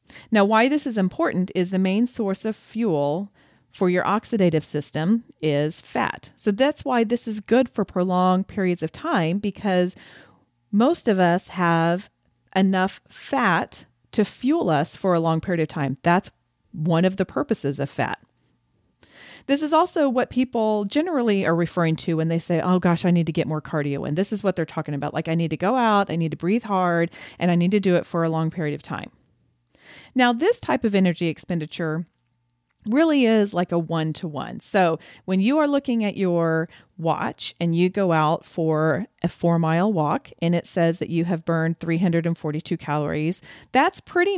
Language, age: English, 40-59